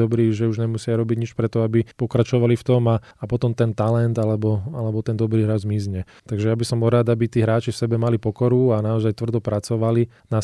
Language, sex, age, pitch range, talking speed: Slovak, male, 20-39, 110-115 Hz, 230 wpm